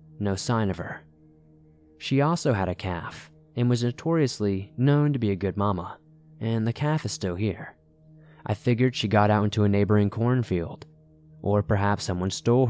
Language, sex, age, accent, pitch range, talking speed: English, male, 20-39, American, 95-130 Hz, 175 wpm